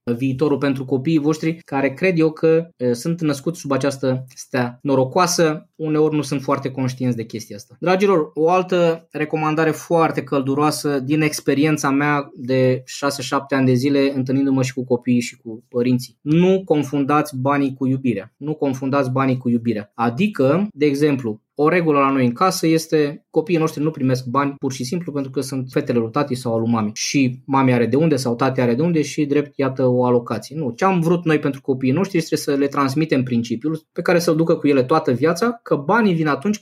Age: 20-39